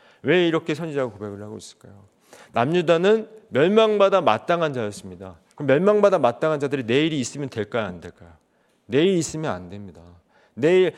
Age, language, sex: 40-59, Korean, male